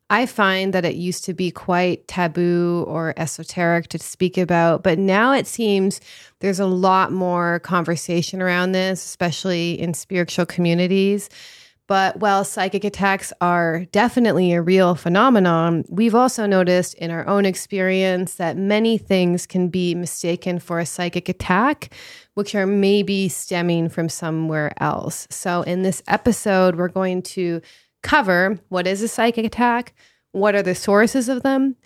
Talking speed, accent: 155 wpm, American